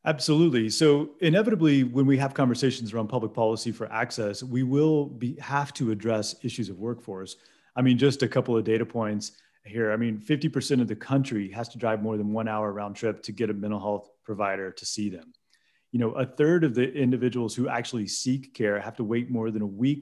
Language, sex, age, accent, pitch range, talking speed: English, male, 30-49, American, 115-145 Hz, 220 wpm